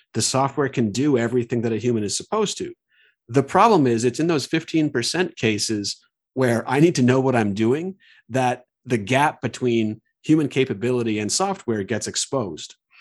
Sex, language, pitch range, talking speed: male, English, 110-145 Hz, 170 wpm